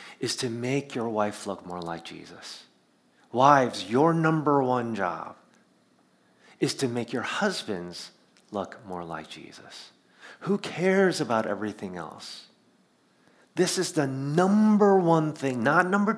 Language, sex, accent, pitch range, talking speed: English, male, American, 100-140 Hz, 135 wpm